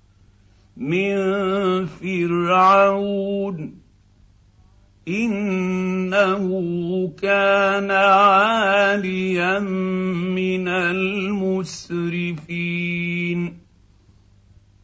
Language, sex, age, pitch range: Arabic, male, 50-69, 155-190 Hz